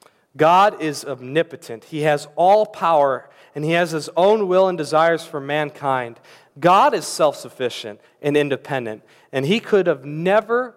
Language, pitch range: English, 125-170 Hz